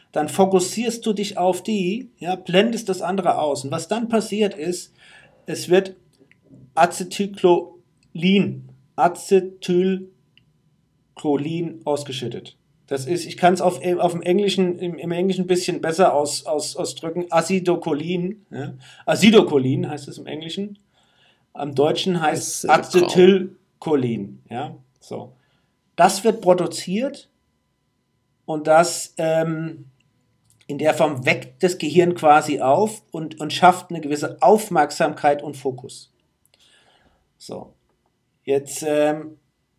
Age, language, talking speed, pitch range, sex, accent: 50-69, German, 115 wpm, 145-180 Hz, male, German